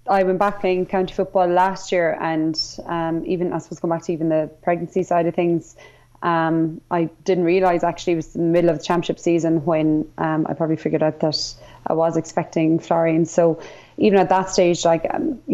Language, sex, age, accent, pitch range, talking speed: English, female, 20-39, Irish, 160-180 Hz, 205 wpm